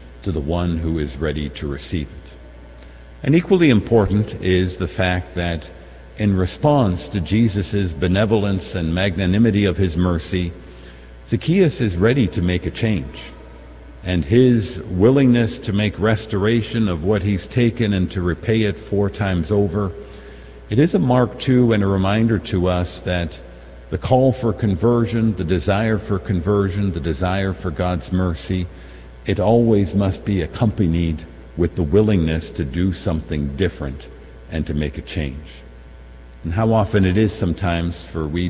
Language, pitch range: English, 80-105 Hz